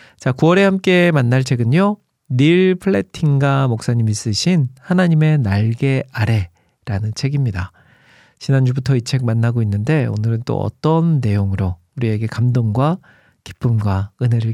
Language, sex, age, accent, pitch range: Korean, male, 40-59, native, 115-150 Hz